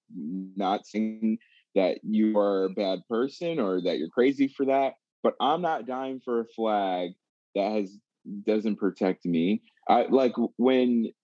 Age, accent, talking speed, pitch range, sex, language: 20-39, American, 155 wpm, 100-145 Hz, male, English